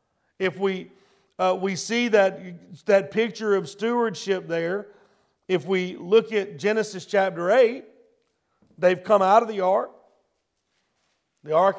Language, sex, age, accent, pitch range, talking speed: English, male, 50-69, American, 165-205 Hz, 130 wpm